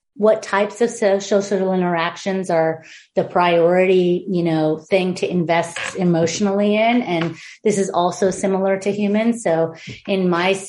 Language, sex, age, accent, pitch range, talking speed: English, female, 30-49, American, 175-215 Hz, 145 wpm